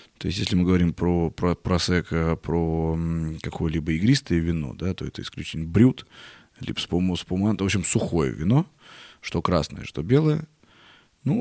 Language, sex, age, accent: Russian, male, 20-39, native